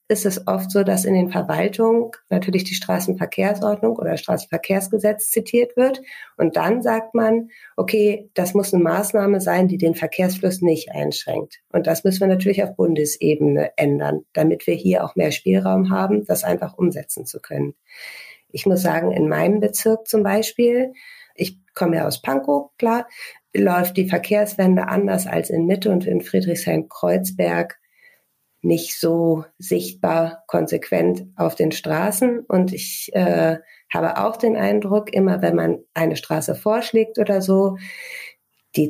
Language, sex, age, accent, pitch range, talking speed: German, female, 50-69, German, 155-210 Hz, 150 wpm